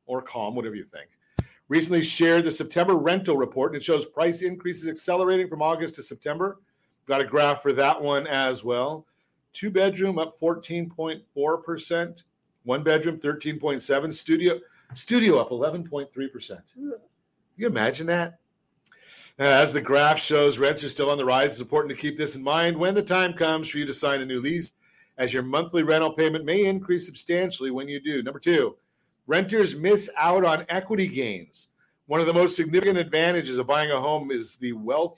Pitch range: 140-175 Hz